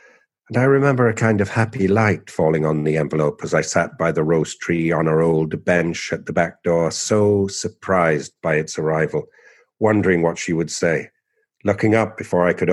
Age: 50-69